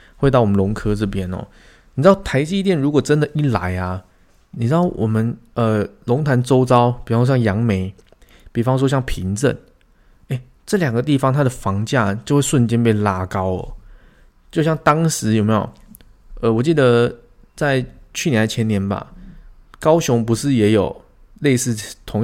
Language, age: Chinese, 20-39